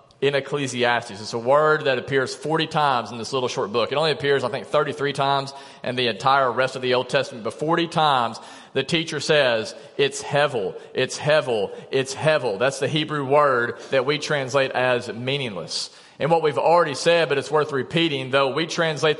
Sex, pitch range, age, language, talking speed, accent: male, 140-195 Hz, 40-59, English, 195 wpm, American